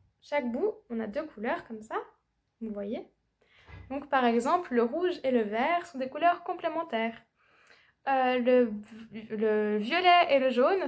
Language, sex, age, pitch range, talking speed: French, female, 10-29, 220-295 Hz, 160 wpm